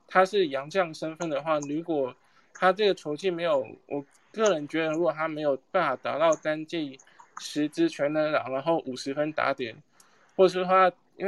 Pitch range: 140-175 Hz